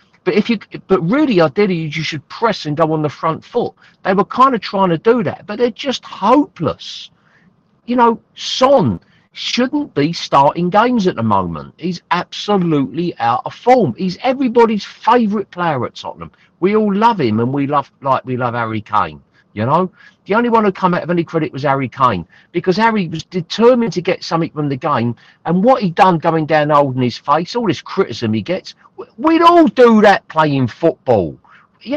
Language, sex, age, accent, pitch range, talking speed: English, male, 50-69, British, 160-235 Hz, 200 wpm